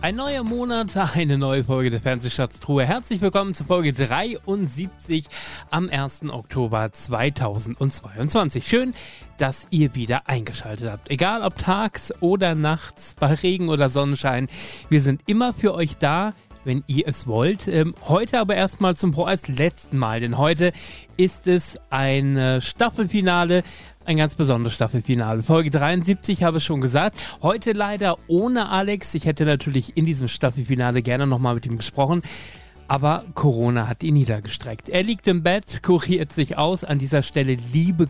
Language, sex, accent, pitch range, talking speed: German, male, German, 125-175 Hz, 155 wpm